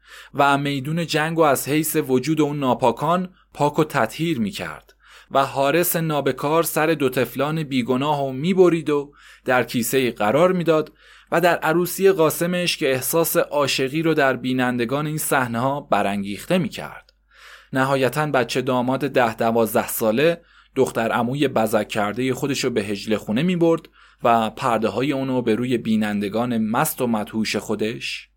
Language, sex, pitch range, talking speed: Persian, male, 115-155 Hz, 150 wpm